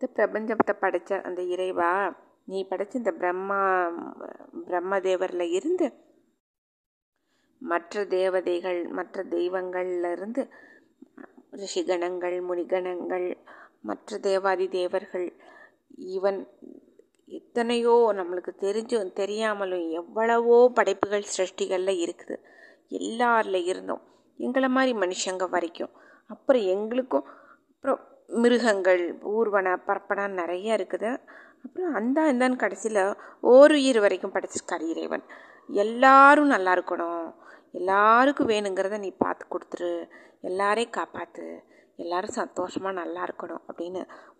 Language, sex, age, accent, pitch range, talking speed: Tamil, female, 20-39, native, 185-260 Hz, 90 wpm